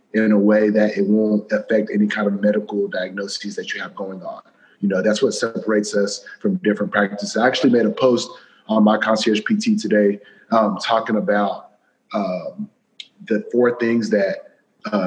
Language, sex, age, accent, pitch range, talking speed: English, male, 30-49, American, 105-130 Hz, 180 wpm